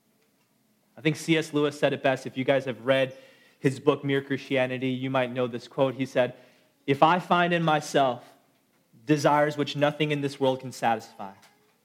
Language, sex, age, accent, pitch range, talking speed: English, male, 30-49, American, 130-175 Hz, 180 wpm